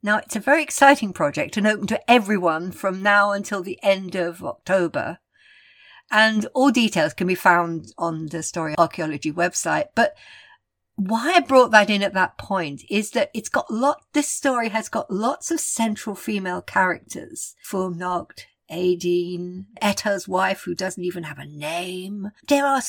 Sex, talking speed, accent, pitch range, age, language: female, 165 wpm, British, 185-275 Hz, 60-79, English